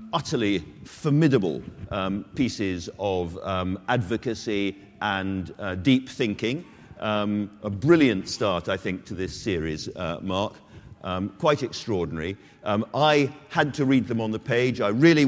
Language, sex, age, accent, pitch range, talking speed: English, male, 50-69, British, 105-145 Hz, 140 wpm